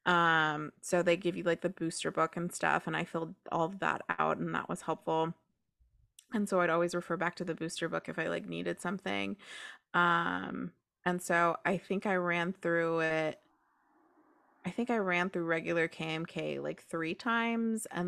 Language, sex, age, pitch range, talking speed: English, female, 20-39, 160-190 Hz, 190 wpm